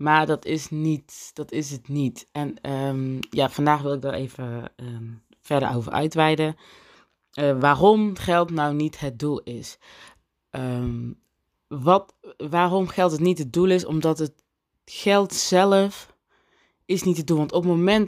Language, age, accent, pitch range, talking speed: Dutch, 20-39, Dutch, 140-170 Hz, 165 wpm